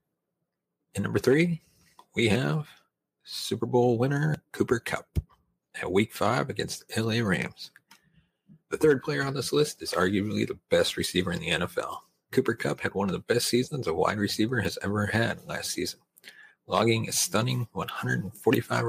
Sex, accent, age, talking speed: male, American, 40-59, 160 wpm